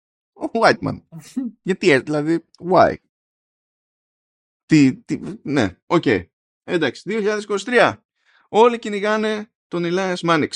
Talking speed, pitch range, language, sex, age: 110 wpm, 105-160 Hz, Greek, male, 20-39